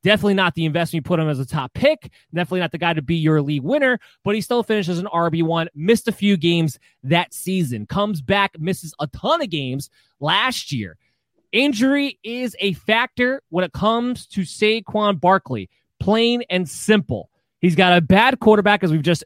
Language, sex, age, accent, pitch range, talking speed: English, male, 20-39, American, 155-200 Hz, 195 wpm